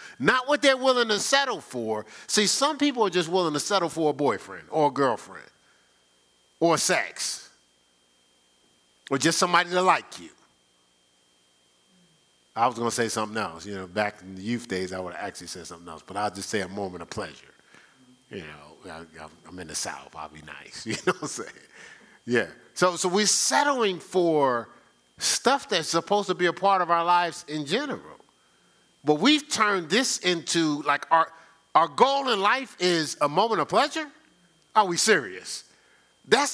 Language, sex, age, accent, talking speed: English, male, 40-59, American, 180 wpm